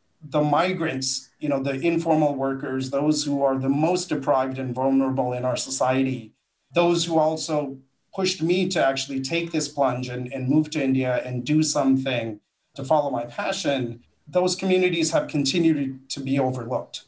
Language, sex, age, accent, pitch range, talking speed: English, male, 40-59, American, 135-165 Hz, 165 wpm